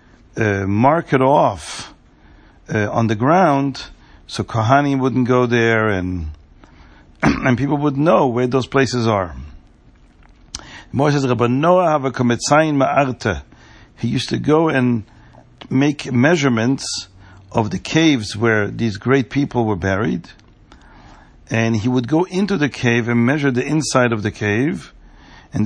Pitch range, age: 115-155 Hz, 50-69